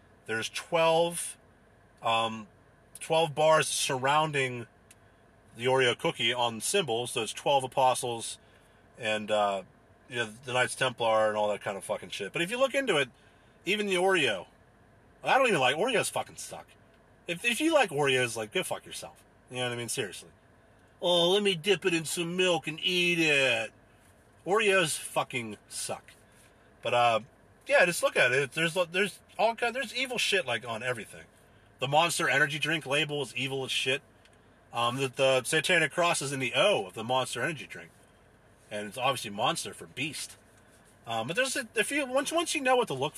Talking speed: 185 wpm